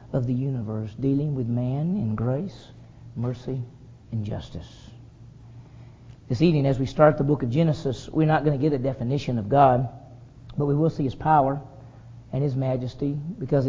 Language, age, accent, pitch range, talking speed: English, 40-59, American, 125-170 Hz, 170 wpm